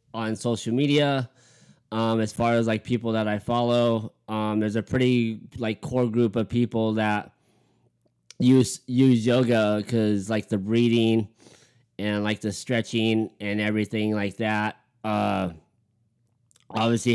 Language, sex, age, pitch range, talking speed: English, male, 20-39, 105-120 Hz, 135 wpm